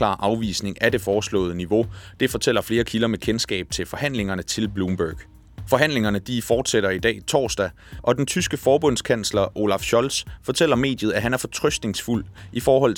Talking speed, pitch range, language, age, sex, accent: 160 wpm, 95-120 Hz, Danish, 30-49, male, native